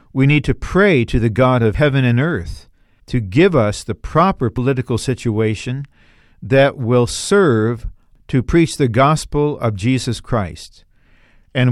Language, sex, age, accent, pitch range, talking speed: English, male, 50-69, American, 115-145 Hz, 150 wpm